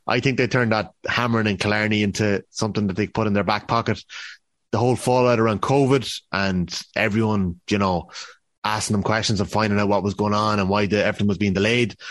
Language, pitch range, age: English, 100-125 Hz, 30-49